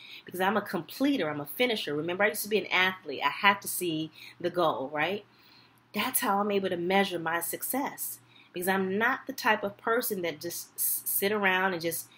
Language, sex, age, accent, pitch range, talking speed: English, female, 30-49, American, 155-200 Hz, 205 wpm